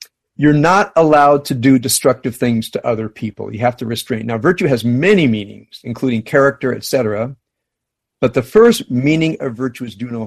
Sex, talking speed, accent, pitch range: male, 185 wpm, American, 120-160 Hz